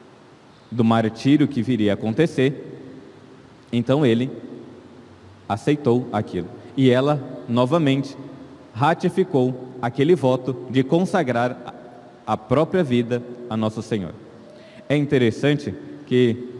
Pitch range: 120-145 Hz